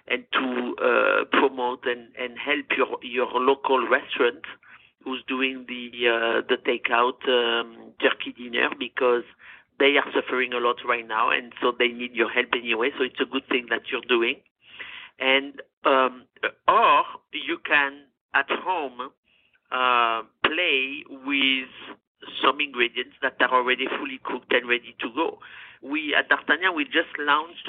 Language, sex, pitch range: English, male, 125-205 Hz